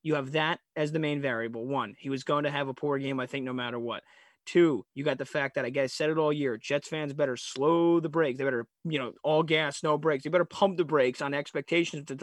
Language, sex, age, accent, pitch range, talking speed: English, male, 30-49, American, 140-170 Hz, 265 wpm